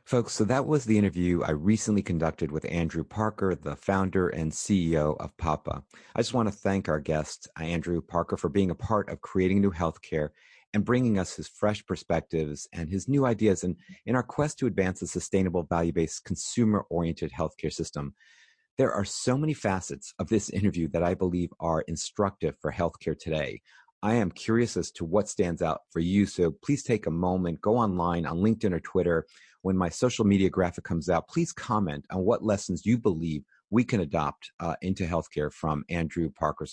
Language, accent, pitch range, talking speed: English, American, 80-100 Hz, 190 wpm